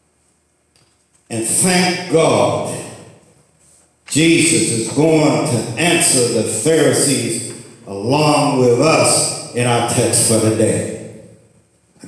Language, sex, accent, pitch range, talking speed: English, male, American, 105-125 Hz, 100 wpm